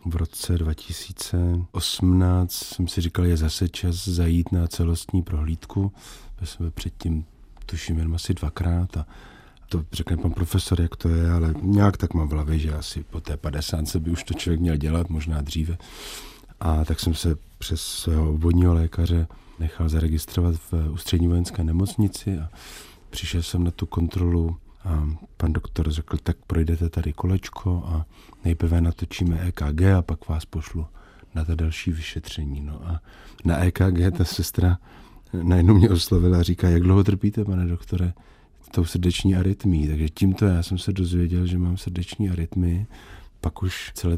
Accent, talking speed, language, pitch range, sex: native, 165 wpm, Czech, 80-95 Hz, male